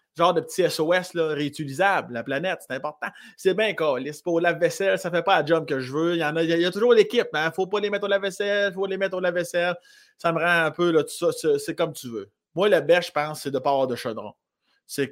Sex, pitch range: male, 150-220 Hz